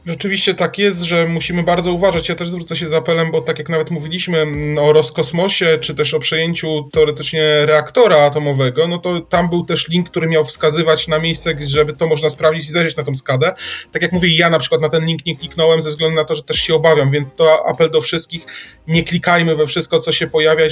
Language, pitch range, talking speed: Polish, 150-170 Hz, 225 wpm